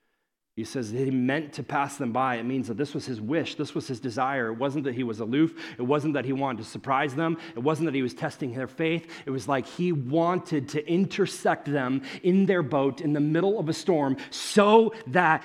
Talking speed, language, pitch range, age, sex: 235 wpm, English, 135-170 Hz, 40-59, male